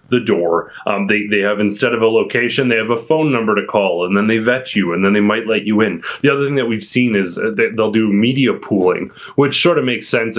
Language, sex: English, male